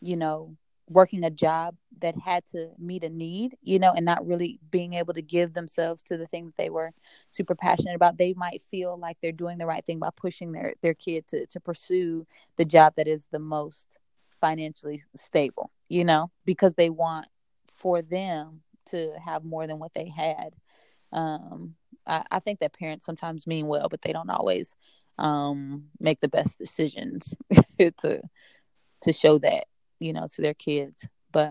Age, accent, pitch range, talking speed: 20-39, American, 160-185 Hz, 185 wpm